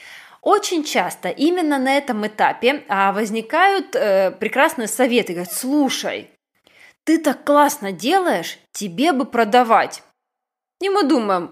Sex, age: female, 20-39